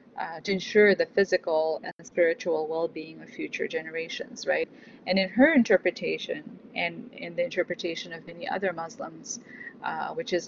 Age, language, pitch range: 30-49, English, 170-260 Hz